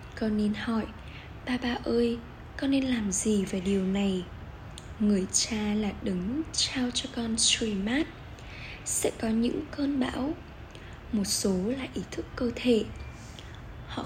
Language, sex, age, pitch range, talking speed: Vietnamese, female, 10-29, 205-260 Hz, 150 wpm